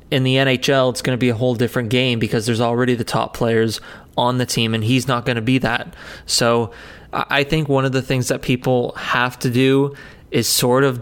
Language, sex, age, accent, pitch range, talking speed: English, male, 20-39, American, 120-135 Hz, 230 wpm